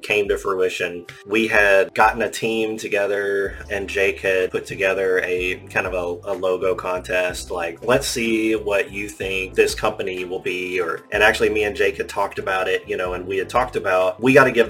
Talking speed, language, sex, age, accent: 210 wpm, English, male, 30-49, American